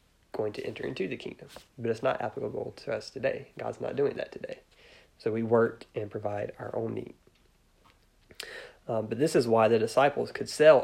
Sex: male